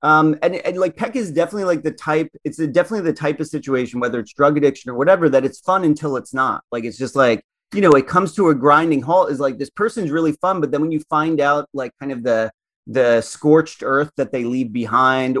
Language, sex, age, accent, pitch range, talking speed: English, male, 30-49, American, 120-150 Hz, 245 wpm